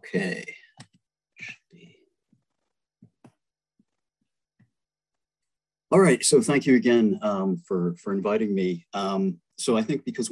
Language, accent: English, American